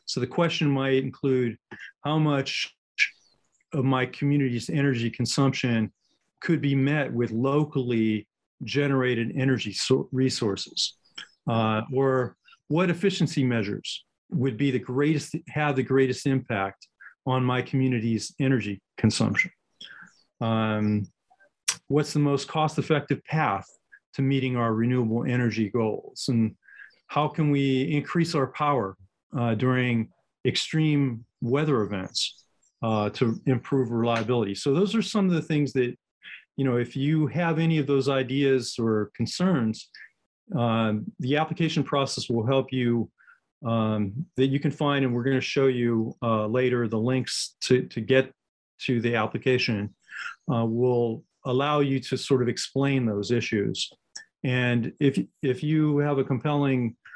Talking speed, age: 135 wpm, 40-59